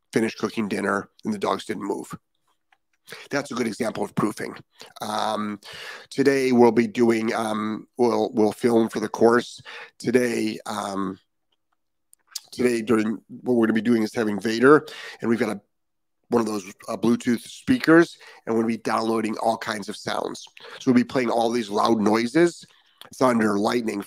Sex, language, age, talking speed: male, English, 30-49, 165 wpm